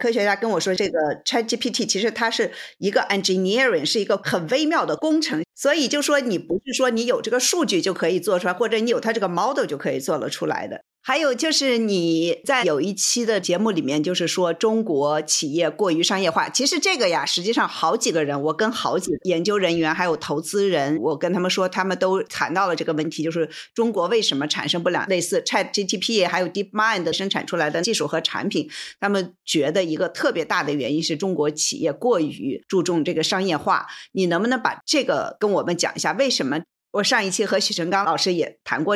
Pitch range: 170-225 Hz